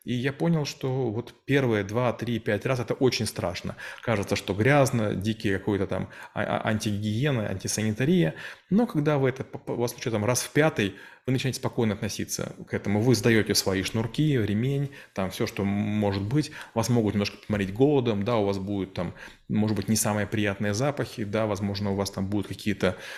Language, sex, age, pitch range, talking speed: Russian, male, 20-39, 105-130 Hz, 185 wpm